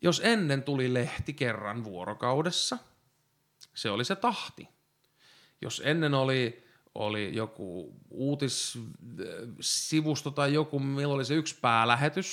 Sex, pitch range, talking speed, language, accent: male, 120-175 Hz, 110 wpm, Finnish, native